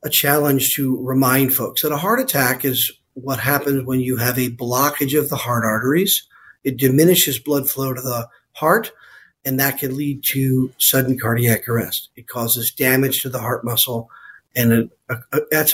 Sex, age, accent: male, 40-59, American